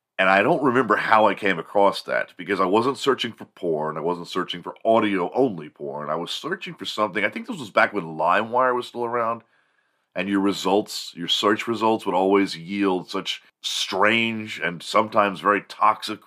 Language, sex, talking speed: English, male, 190 wpm